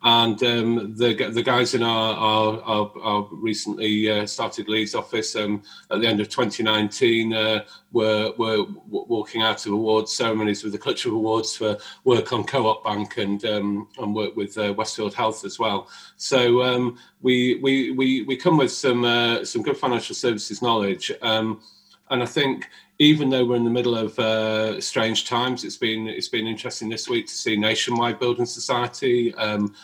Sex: male